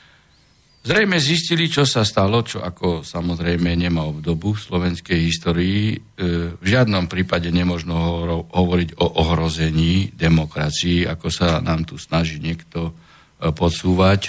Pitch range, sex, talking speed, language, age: 85-105 Hz, male, 120 wpm, Slovak, 60-79